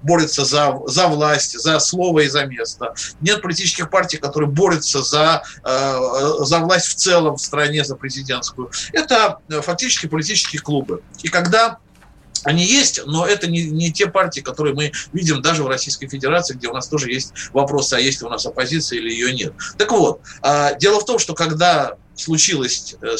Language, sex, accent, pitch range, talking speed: Russian, male, native, 150-215 Hz, 180 wpm